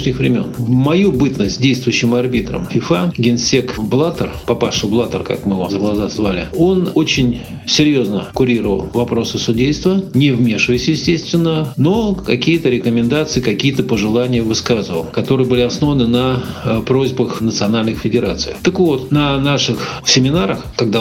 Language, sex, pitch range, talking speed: Russian, male, 115-150 Hz, 125 wpm